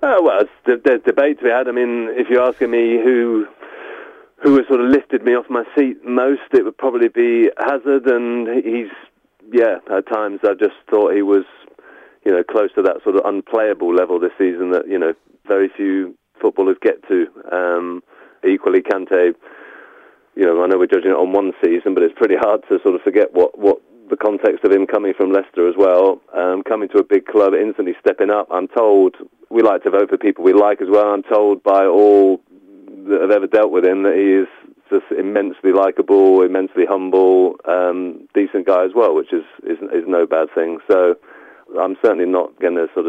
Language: English